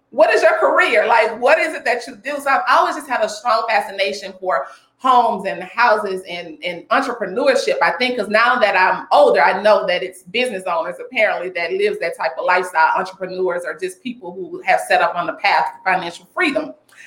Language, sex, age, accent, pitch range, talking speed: English, female, 30-49, American, 185-280 Hz, 210 wpm